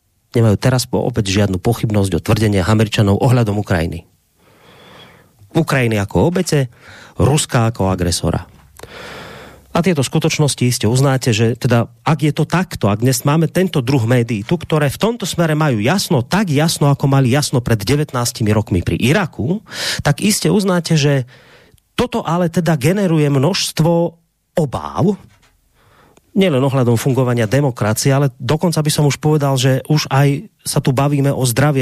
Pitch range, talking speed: 110-155 Hz, 150 wpm